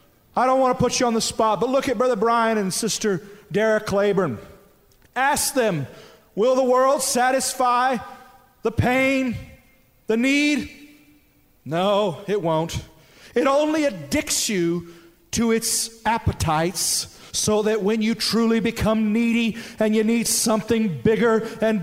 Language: English